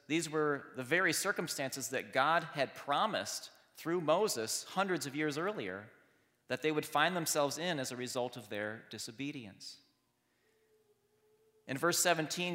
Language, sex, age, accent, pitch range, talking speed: English, male, 30-49, American, 120-155 Hz, 145 wpm